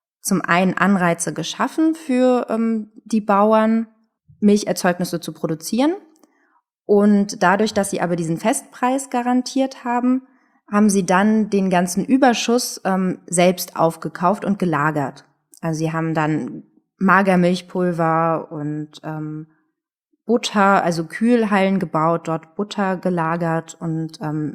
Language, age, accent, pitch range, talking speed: German, 20-39, German, 170-230 Hz, 115 wpm